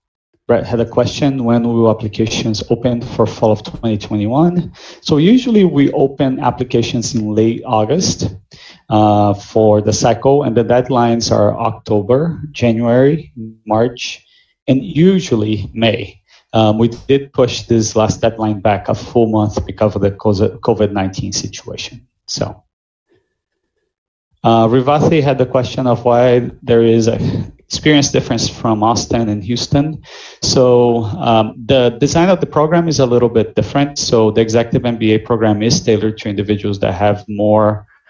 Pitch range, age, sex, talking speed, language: 105-125 Hz, 30-49, male, 145 wpm, Telugu